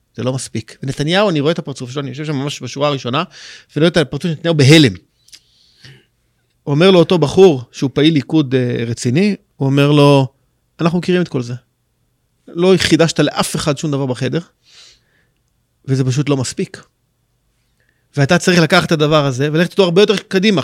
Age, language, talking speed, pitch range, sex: 30-49, Hebrew, 175 wpm, 140-190 Hz, male